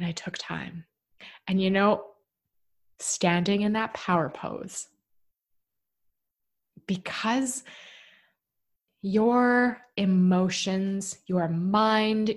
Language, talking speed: English, 80 wpm